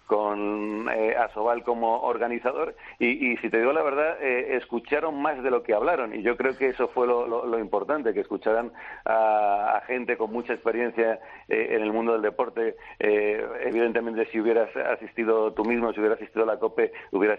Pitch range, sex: 110-130 Hz, male